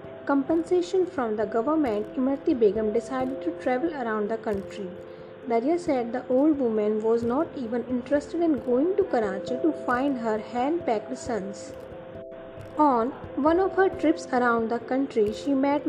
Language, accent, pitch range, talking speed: English, Indian, 225-315 Hz, 150 wpm